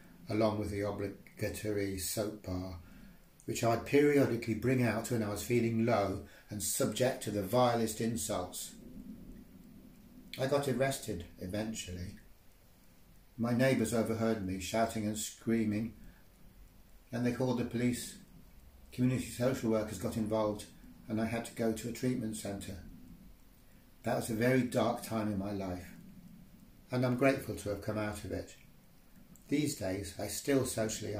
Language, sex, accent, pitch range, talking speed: English, male, British, 95-120 Hz, 145 wpm